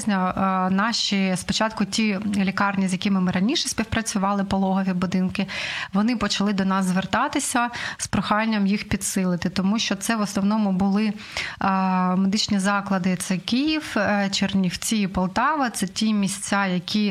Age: 20-39